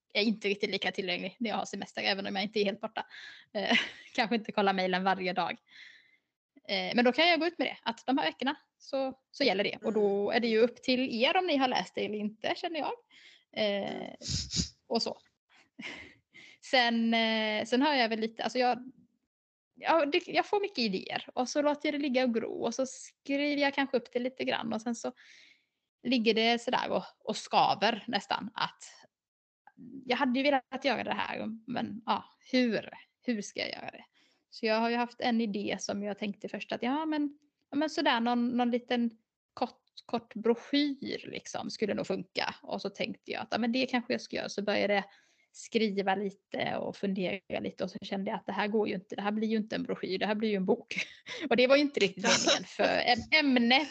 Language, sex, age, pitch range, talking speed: Swedish, female, 10-29, 210-270 Hz, 220 wpm